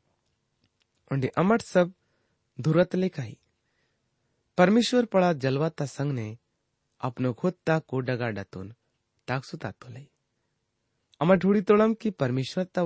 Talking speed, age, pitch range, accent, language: 110 wpm, 30-49, 115-165 Hz, Indian, English